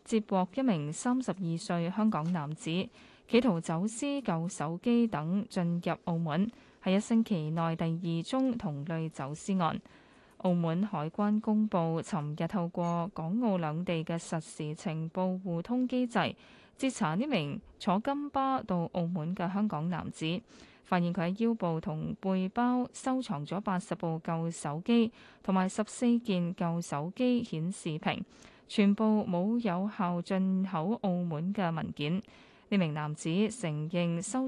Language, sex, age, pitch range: Chinese, female, 20-39, 165-215 Hz